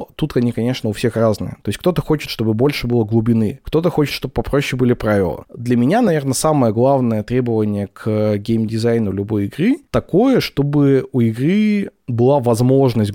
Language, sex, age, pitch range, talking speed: Russian, male, 20-39, 115-145 Hz, 165 wpm